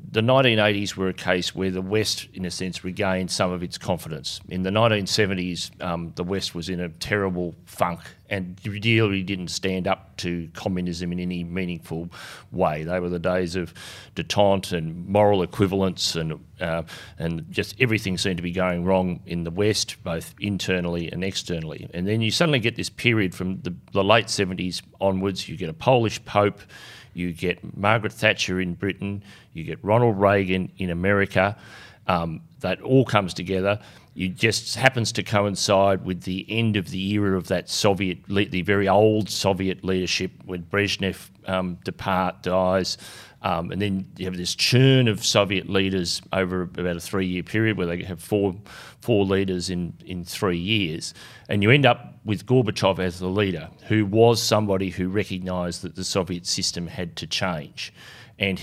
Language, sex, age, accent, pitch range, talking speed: English, male, 40-59, Australian, 90-105 Hz, 175 wpm